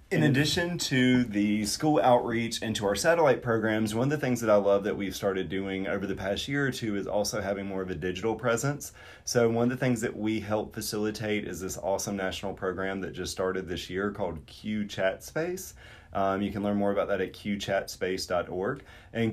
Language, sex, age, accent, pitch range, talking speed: English, male, 30-49, American, 95-115 Hz, 215 wpm